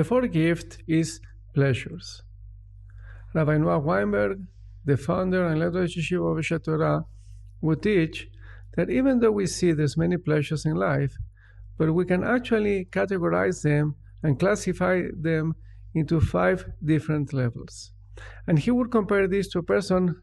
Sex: male